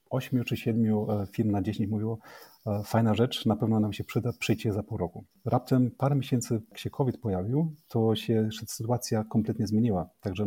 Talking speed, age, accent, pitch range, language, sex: 180 wpm, 30-49, native, 105-120 Hz, Polish, male